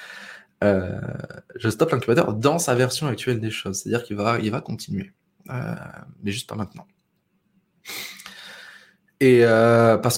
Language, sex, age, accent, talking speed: French, male, 20-39, French, 140 wpm